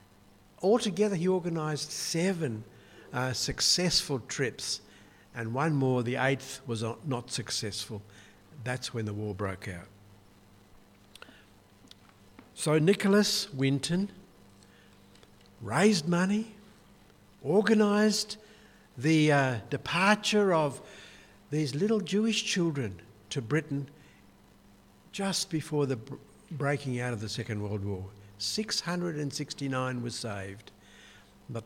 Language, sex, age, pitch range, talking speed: English, male, 60-79, 100-150 Hz, 95 wpm